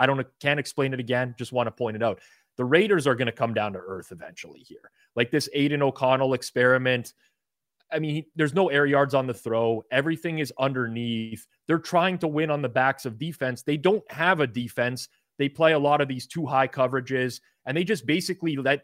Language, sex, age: English, male, 30-49